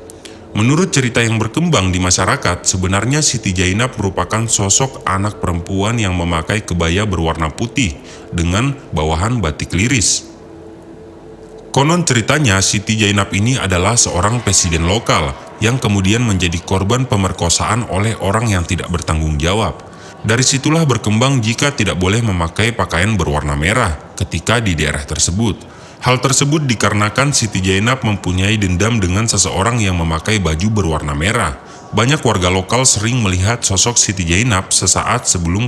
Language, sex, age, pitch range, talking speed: Indonesian, male, 30-49, 90-120 Hz, 135 wpm